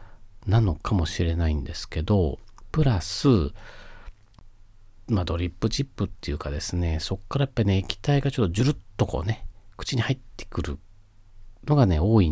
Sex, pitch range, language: male, 90-115 Hz, Japanese